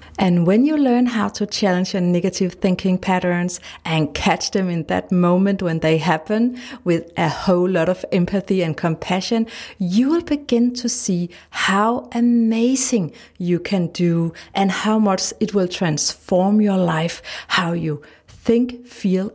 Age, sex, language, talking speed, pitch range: 30-49, female, English, 155 wpm, 175-230 Hz